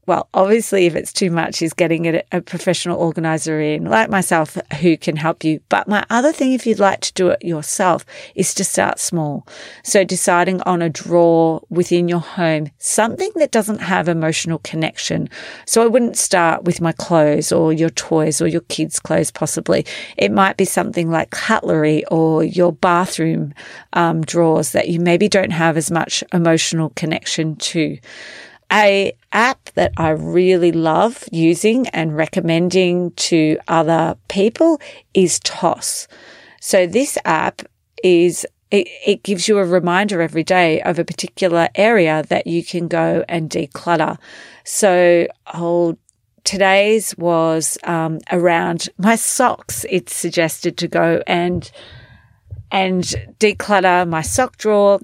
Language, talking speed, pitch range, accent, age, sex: English, 150 wpm, 165-195 Hz, Australian, 40-59, female